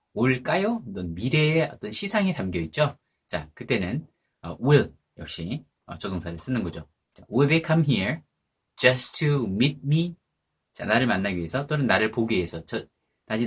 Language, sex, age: Korean, male, 30-49